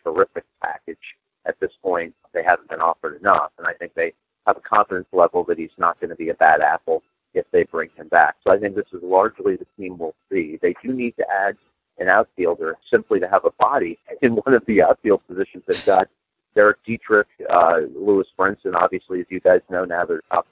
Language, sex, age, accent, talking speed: English, male, 40-59, American, 220 wpm